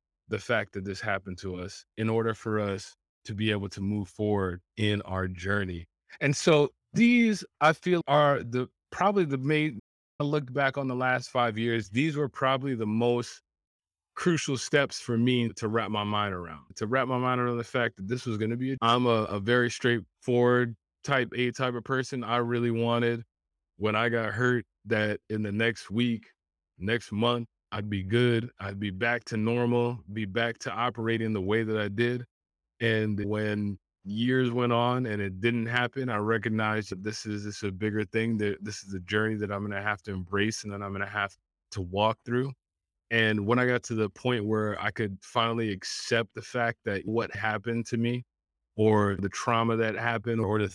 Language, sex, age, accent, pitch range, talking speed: English, male, 20-39, American, 105-120 Hz, 205 wpm